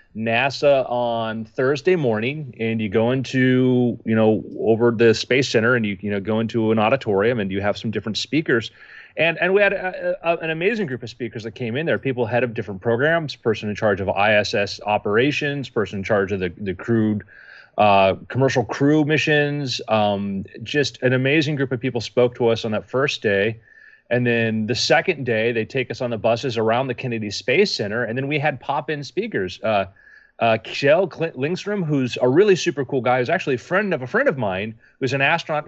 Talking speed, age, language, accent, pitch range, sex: 205 wpm, 30-49, English, American, 115-145 Hz, male